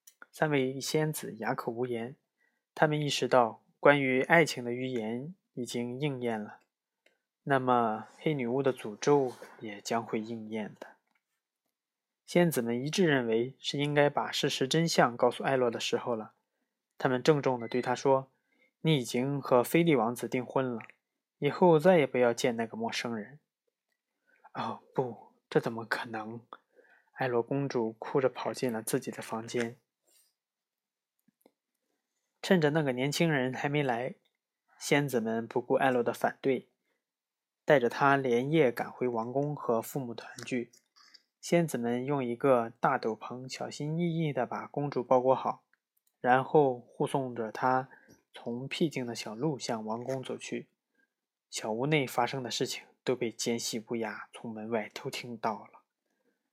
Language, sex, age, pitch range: Chinese, male, 20-39, 120-145 Hz